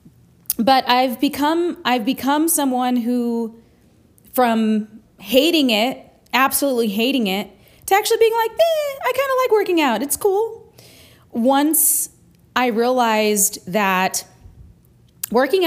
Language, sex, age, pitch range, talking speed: English, female, 30-49, 215-280 Hz, 120 wpm